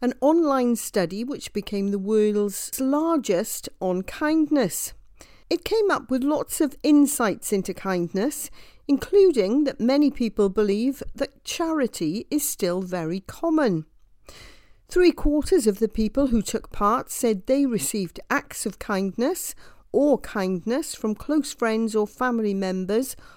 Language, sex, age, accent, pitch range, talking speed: English, female, 40-59, British, 200-280 Hz, 135 wpm